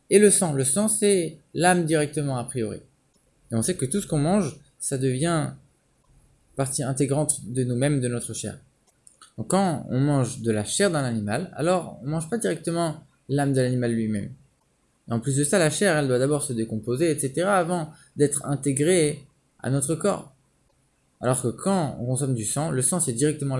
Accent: French